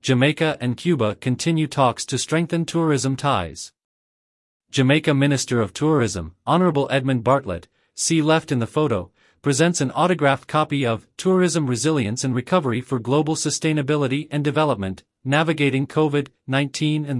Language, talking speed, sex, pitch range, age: English, 135 wpm, male, 125-155 Hz, 40-59